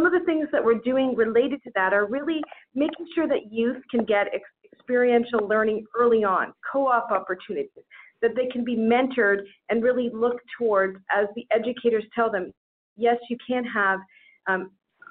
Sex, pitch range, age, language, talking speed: female, 205-255 Hz, 40-59, English, 170 wpm